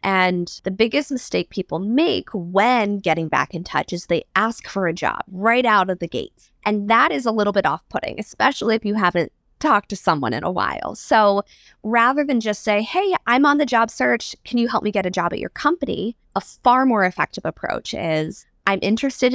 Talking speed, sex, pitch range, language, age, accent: 210 wpm, female, 175-240 Hz, English, 20-39, American